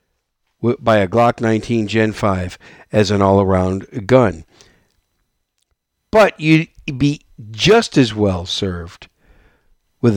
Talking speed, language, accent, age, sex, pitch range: 100 wpm, English, American, 50-69, male, 105-150 Hz